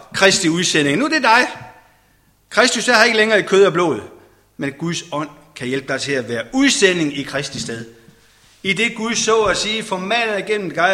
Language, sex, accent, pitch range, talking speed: Danish, male, native, 145-215 Hz, 215 wpm